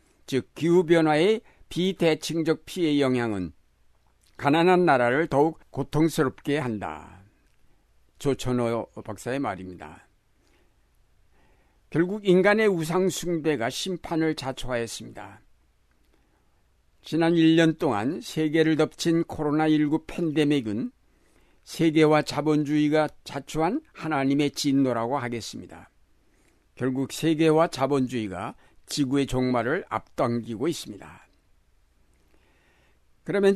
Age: 60-79